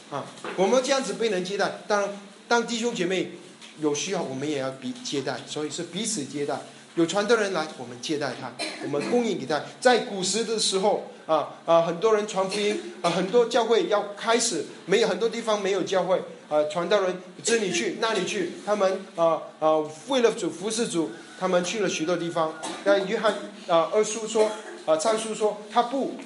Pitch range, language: 170-235 Hz, Chinese